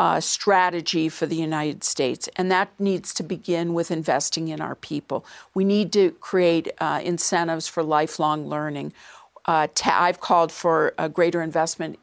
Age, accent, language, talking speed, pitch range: 50-69, American, English, 160 wpm, 165-195 Hz